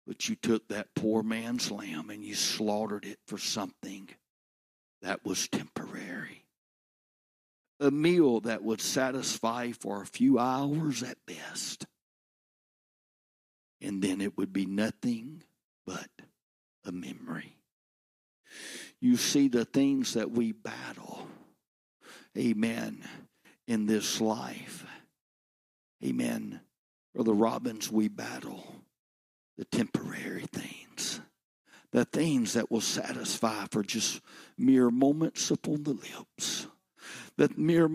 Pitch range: 110-155 Hz